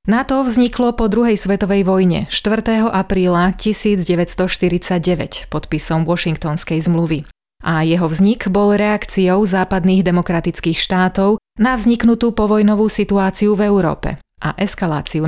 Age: 30-49